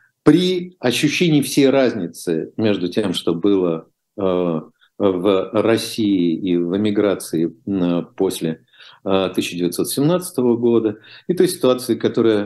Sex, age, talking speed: male, 50-69, 105 wpm